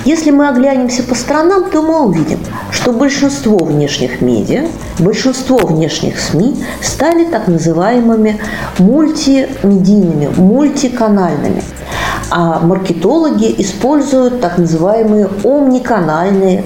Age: 40-59